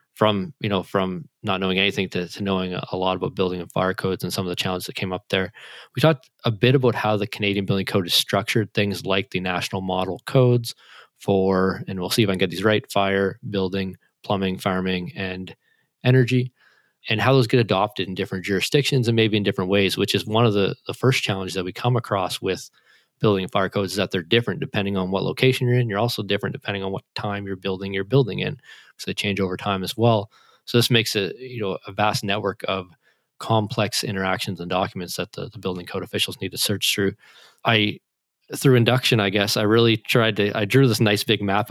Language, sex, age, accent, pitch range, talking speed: English, male, 20-39, American, 95-115 Hz, 225 wpm